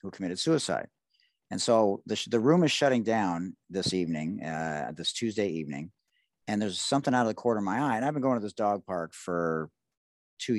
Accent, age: American, 50-69